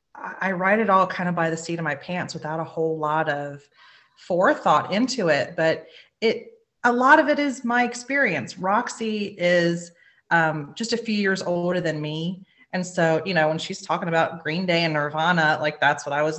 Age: 30-49